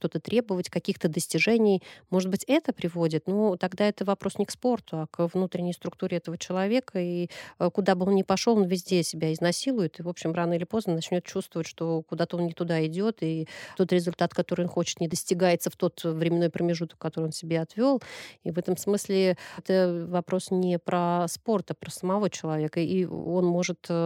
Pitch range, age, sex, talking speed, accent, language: 165-195 Hz, 30-49, female, 195 wpm, native, Russian